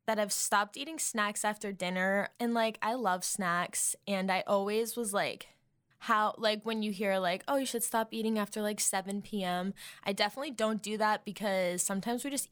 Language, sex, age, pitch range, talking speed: English, female, 10-29, 180-220 Hz, 190 wpm